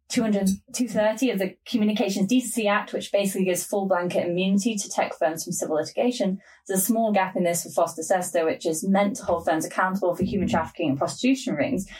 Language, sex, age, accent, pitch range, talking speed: English, female, 10-29, British, 180-225 Hz, 200 wpm